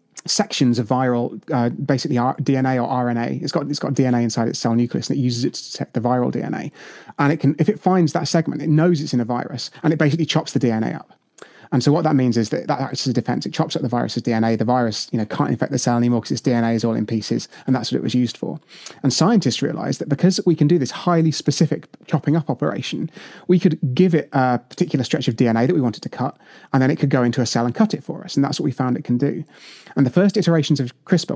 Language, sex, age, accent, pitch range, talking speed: English, male, 30-49, British, 125-155 Hz, 275 wpm